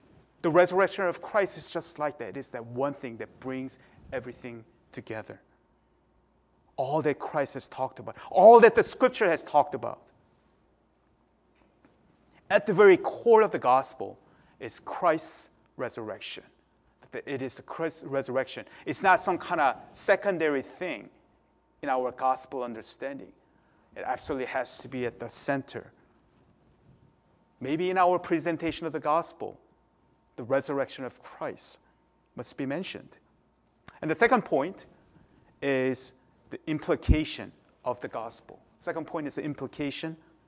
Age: 30-49